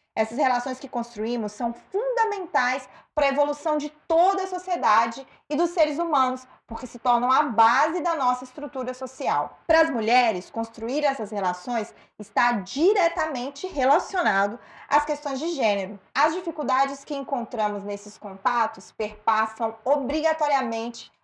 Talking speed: 135 wpm